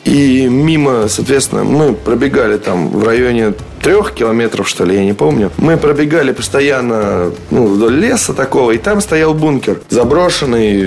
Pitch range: 105-150 Hz